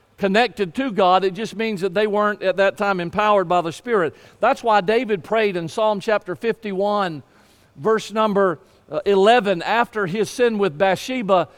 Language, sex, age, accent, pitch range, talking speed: English, male, 50-69, American, 180-225 Hz, 165 wpm